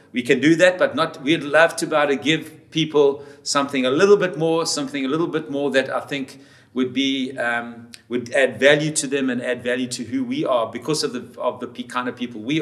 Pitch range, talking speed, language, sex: 130-160 Hz, 240 wpm, English, male